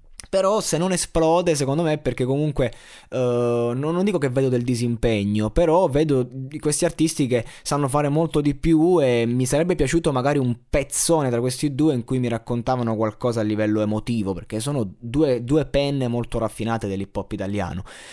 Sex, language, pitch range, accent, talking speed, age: male, Italian, 110-135 Hz, native, 180 wpm, 20-39